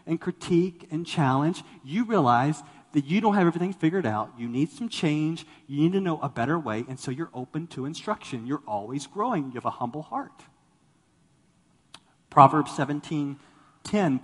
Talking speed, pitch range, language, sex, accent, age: 170 wpm, 130-165 Hz, English, male, American, 40-59